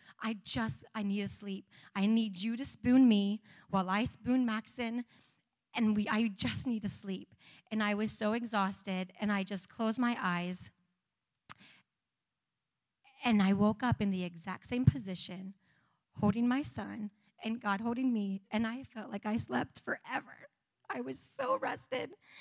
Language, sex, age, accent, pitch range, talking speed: English, female, 30-49, American, 200-250 Hz, 165 wpm